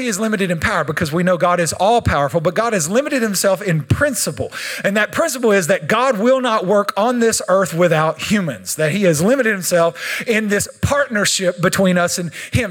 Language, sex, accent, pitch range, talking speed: English, male, American, 190-270 Hz, 210 wpm